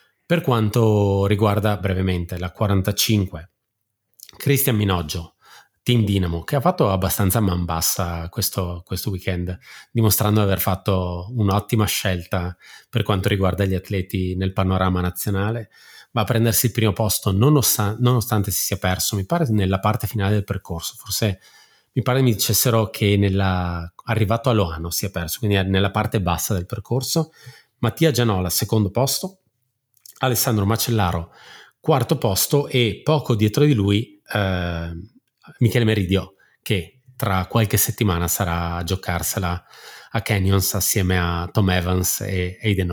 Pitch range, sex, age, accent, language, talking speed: 95-115 Hz, male, 30-49, native, Italian, 145 wpm